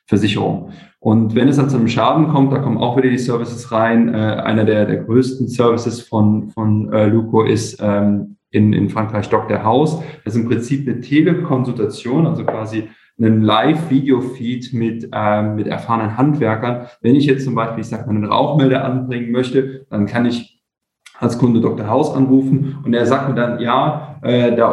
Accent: German